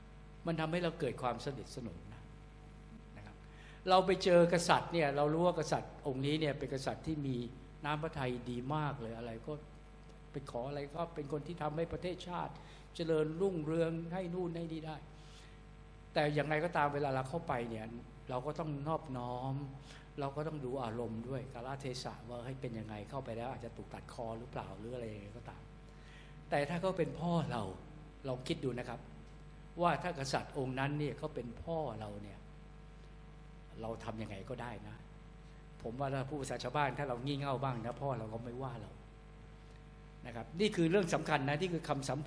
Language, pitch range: Thai, 120-155 Hz